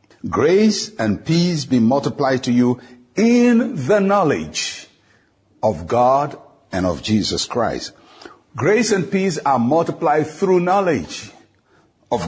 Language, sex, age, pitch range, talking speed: English, male, 60-79, 120-180 Hz, 115 wpm